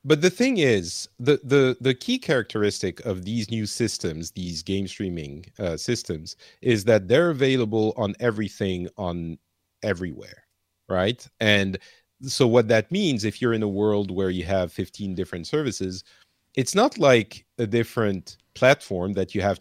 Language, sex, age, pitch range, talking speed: English, male, 40-59, 90-120 Hz, 160 wpm